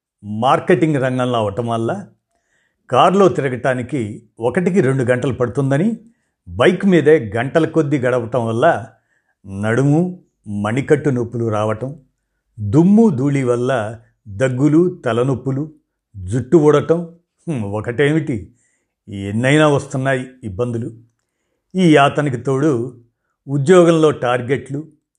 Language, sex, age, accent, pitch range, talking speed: Telugu, male, 50-69, native, 115-145 Hz, 85 wpm